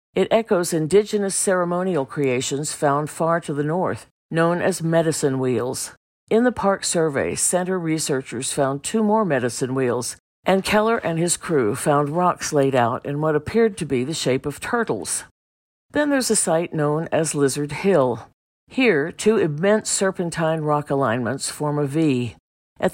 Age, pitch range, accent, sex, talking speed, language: 50-69, 140-180 Hz, American, female, 160 wpm, English